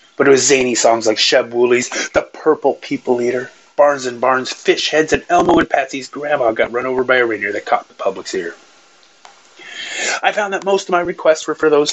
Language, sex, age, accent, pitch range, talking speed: English, male, 30-49, American, 115-150 Hz, 215 wpm